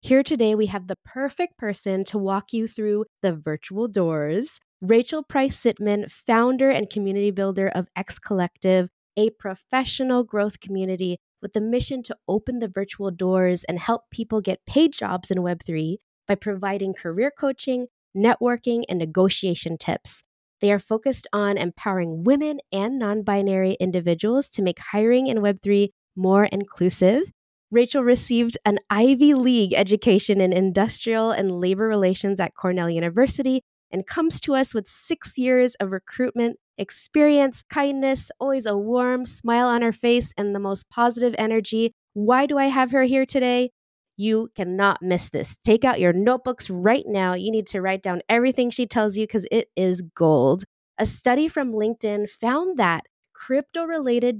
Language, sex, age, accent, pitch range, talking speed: English, female, 20-39, American, 190-250 Hz, 160 wpm